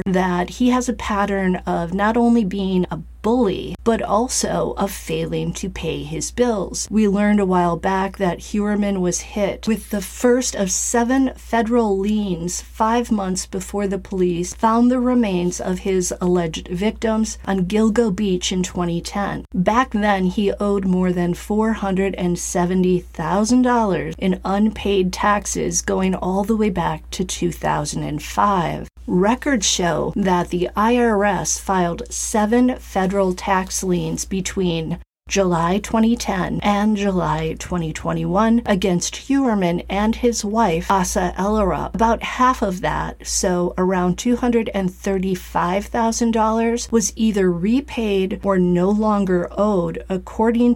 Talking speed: 125 wpm